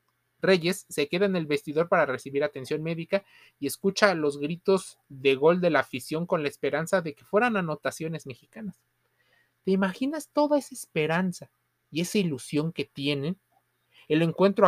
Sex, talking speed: male, 160 wpm